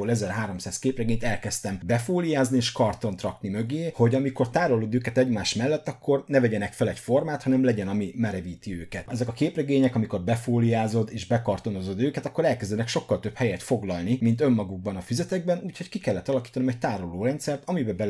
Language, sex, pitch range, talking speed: Hungarian, male, 105-140 Hz, 170 wpm